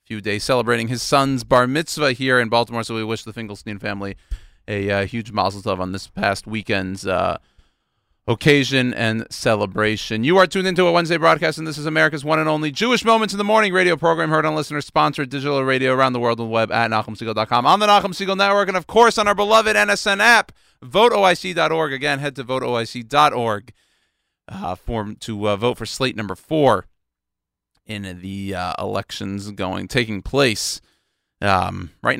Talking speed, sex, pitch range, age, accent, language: 185 wpm, male, 105-145 Hz, 40-59, American, English